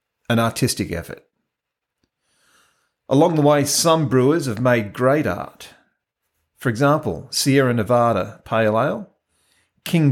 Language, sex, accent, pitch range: English, male, Australian, 105-140 Hz